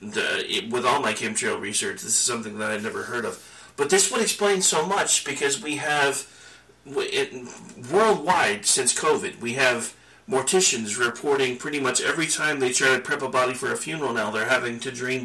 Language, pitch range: English, 125-190 Hz